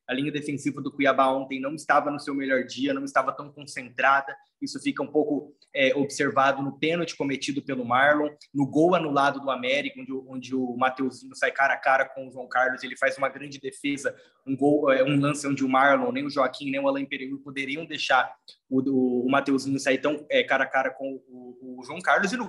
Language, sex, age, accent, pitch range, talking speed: Portuguese, male, 20-39, Brazilian, 135-160 Hz, 210 wpm